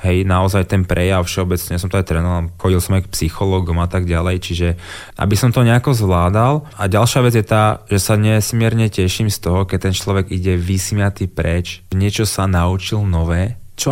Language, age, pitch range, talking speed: Slovak, 20-39, 90-115 Hz, 200 wpm